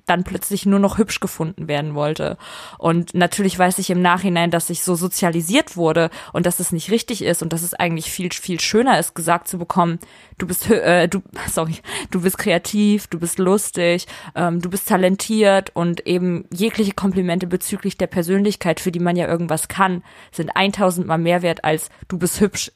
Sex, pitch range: female, 170-195 Hz